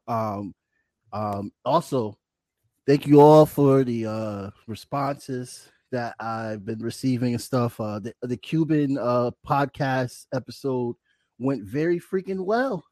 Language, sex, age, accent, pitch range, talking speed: English, male, 30-49, American, 115-145 Hz, 125 wpm